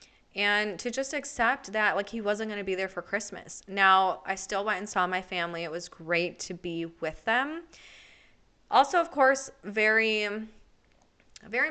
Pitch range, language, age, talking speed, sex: 180-215 Hz, English, 20-39, 175 wpm, female